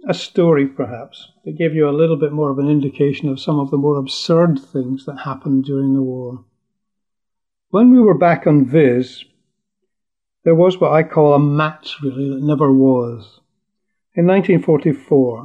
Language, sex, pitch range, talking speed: English, male, 135-170 Hz, 170 wpm